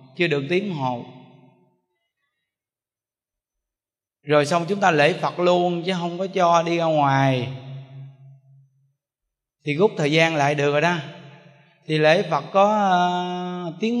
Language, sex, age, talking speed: Vietnamese, male, 20-39, 135 wpm